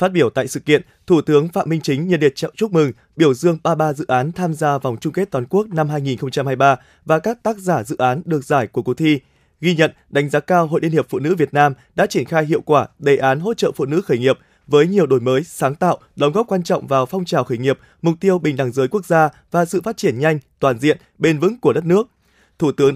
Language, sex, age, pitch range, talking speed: Vietnamese, male, 20-39, 140-175 Hz, 260 wpm